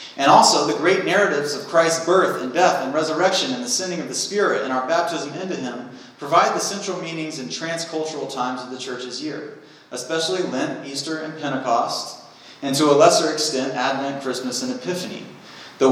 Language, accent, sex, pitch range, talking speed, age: English, American, male, 125-165 Hz, 185 wpm, 30-49